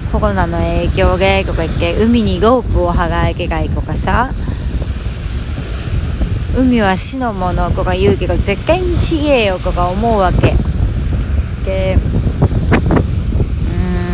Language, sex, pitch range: Japanese, female, 85-100 Hz